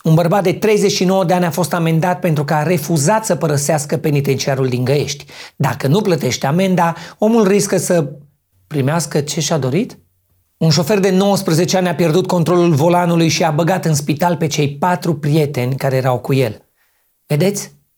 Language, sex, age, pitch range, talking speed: Romanian, male, 30-49, 145-180 Hz, 175 wpm